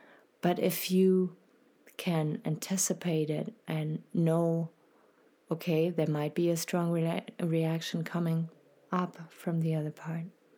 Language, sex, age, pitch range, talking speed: English, female, 30-49, 155-175 Hz, 120 wpm